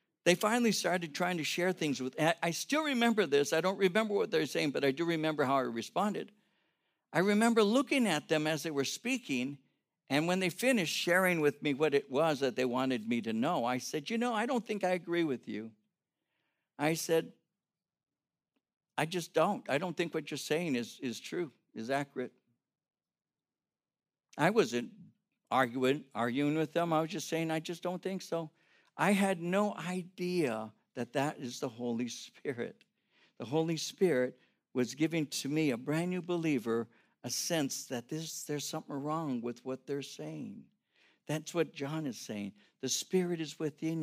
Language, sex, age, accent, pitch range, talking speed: English, male, 60-79, American, 135-175 Hz, 180 wpm